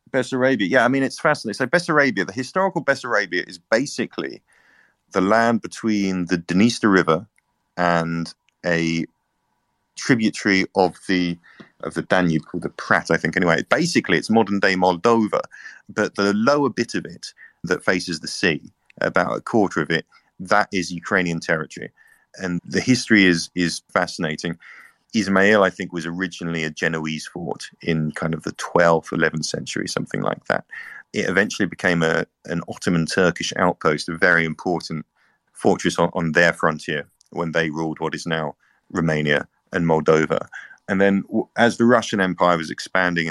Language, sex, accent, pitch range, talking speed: English, male, British, 80-105 Hz, 160 wpm